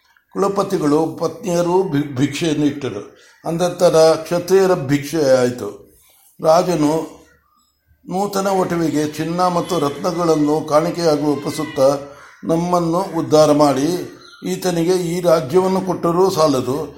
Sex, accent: male, native